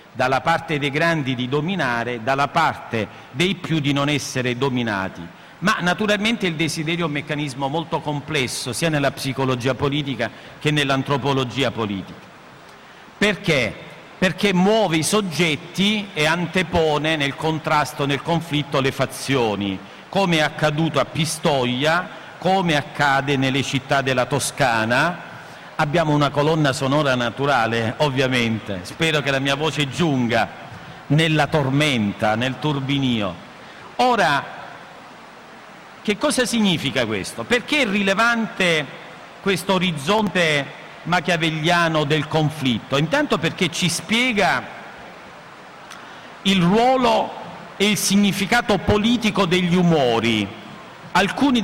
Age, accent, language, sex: 50-69, native, Italian, male